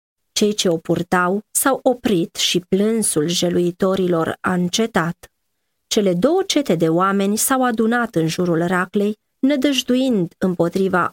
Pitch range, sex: 175-230 Hz, female